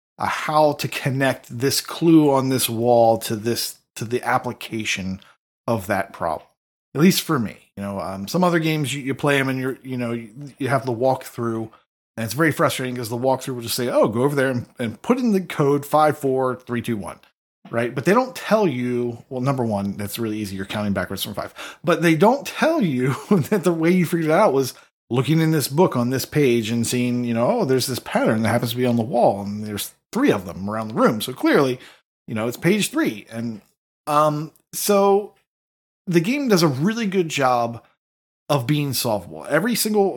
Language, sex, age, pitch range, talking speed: English, male, 30-49, 115-160 Hz, 220 wpm